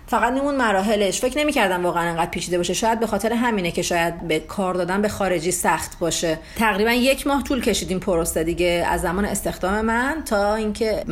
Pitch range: 175-220 Hz